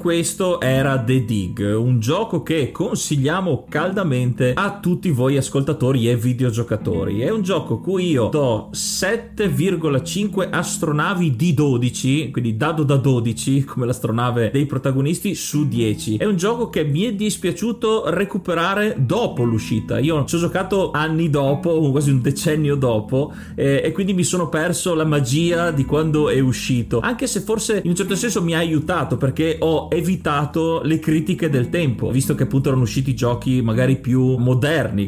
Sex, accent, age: male, native, 30-49